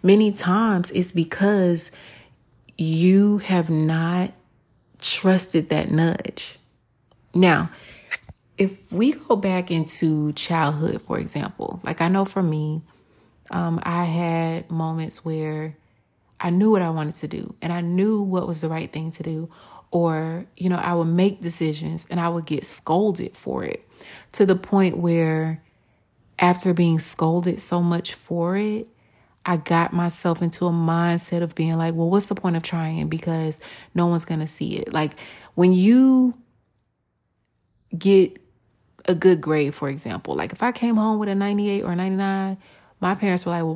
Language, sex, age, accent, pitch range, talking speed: English, female, 30-49, American, 160-185 Hz, 160 wpm